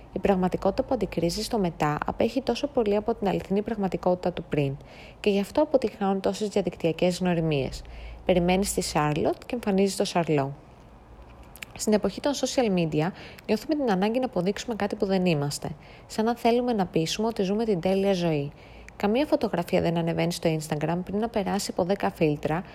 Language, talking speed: Greek, 170 wpm